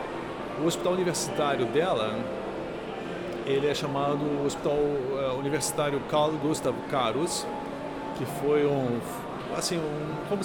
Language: Portuguese